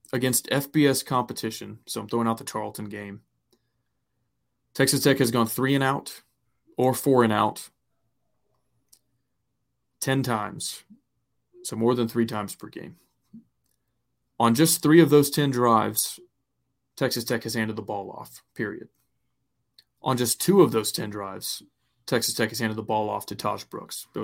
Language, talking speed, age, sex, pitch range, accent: English, 155 wpm, 20-39, male, 110-130 Hz, American